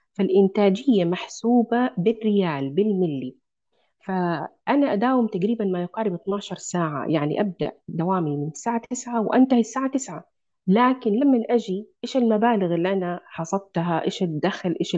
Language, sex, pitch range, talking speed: Arabic, female, 180-240 Hz, 125 wpm